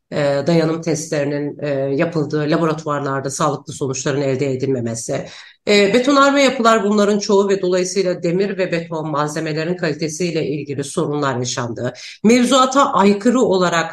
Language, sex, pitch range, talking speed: Turkish, female, 150-195 Hz, 110 wpm